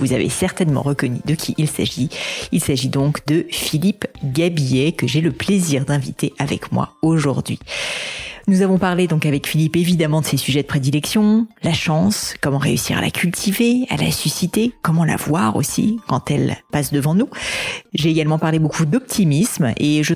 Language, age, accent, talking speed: French, 40-59, French, 180 wpm